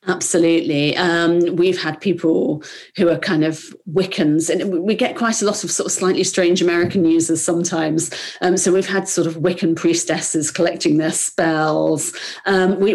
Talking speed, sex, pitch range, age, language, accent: 170 wpm, female, 155-185 Hz, 40-59, English, British